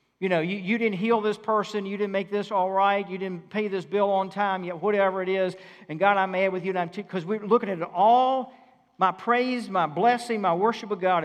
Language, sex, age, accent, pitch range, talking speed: English, male, 50-69, American, 185-255 Hz, 250 wpm